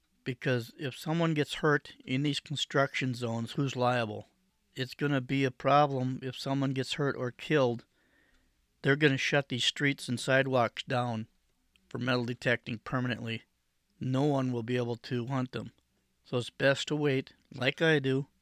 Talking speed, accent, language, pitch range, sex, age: 170 wpm, American, English, 120-140 Hz, male, 50-69